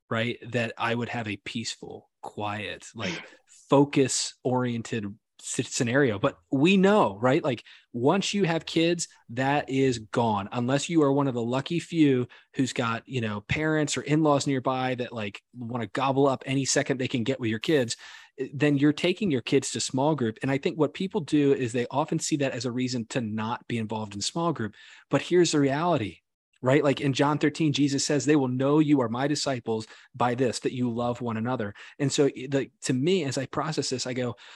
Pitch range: 125-145 Hz